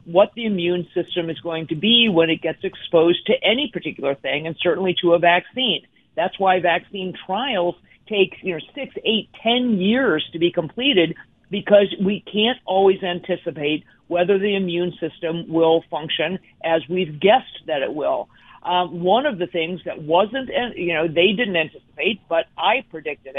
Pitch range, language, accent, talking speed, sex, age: 165-205 Hz, English, American, 170 wpm, female, 50-69